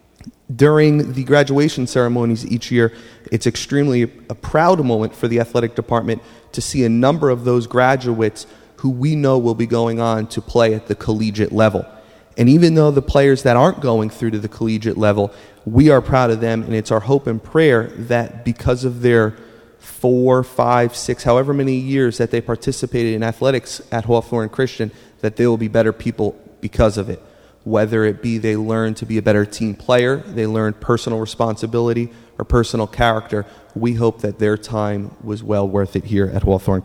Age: 30-49